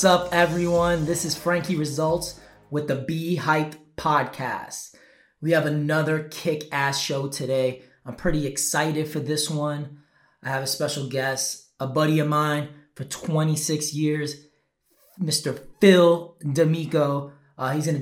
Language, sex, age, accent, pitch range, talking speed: English, male, 20-39, American, 140-165 Hz, 140 wpm